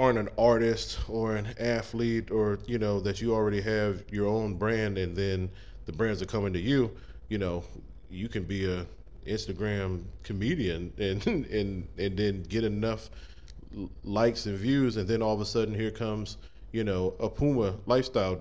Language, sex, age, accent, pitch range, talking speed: English, male, 20-39, American, 95-115 Hz, 175 wpm